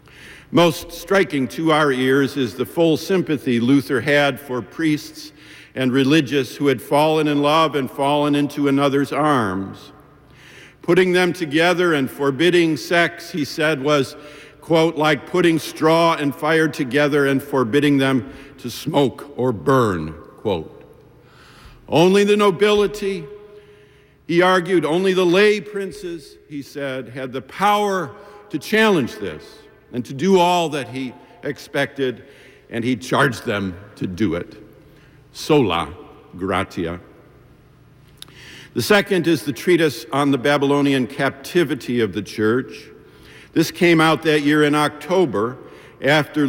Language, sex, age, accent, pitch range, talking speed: English, male, 50-69, American, 130-165 Hz, 130 wpm